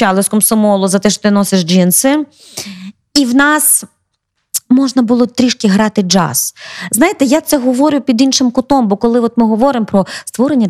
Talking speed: 165 wpm